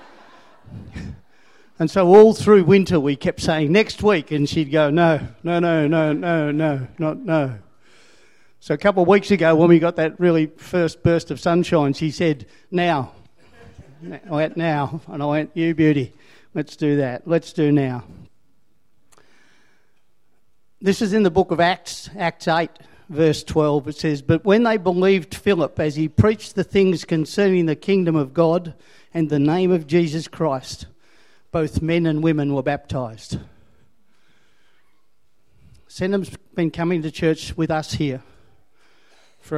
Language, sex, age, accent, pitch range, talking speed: English, male, 50-69, Australian, 145-175 Hz, 150 wpm